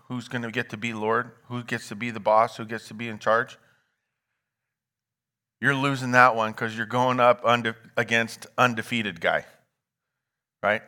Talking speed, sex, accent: 170 wpm, male, American